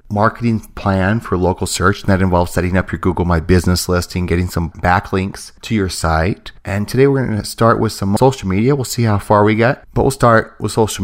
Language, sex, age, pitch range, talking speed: English, male, 30-49, 100-130 Hz, 230 wpm